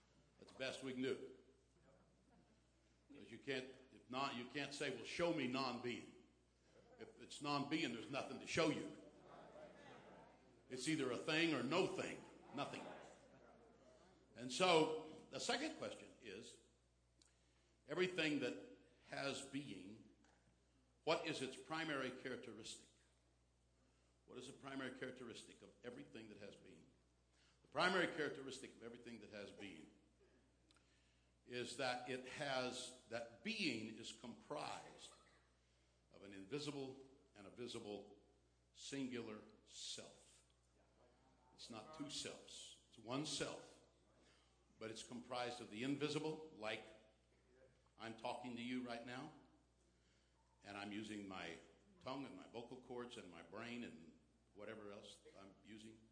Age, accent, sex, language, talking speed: 60-79, American, male, English, 120 wpm